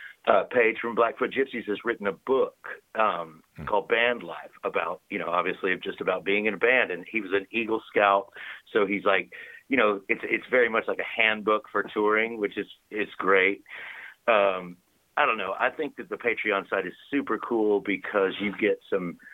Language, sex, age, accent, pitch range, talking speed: English, male, 50-69, American, 95-110 Hz, 200 wpm